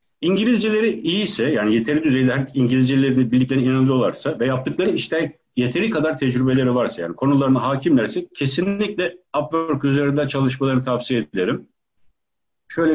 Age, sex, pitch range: 60-79, male, 130-195 Hz